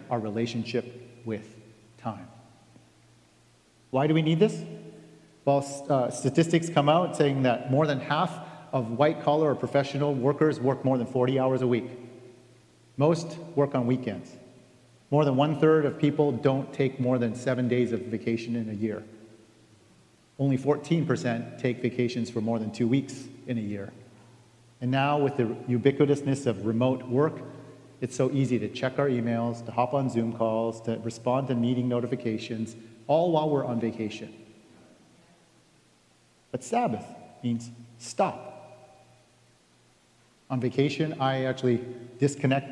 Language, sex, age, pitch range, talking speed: English, male, 40-59, 115-135 Hz, 145 wpm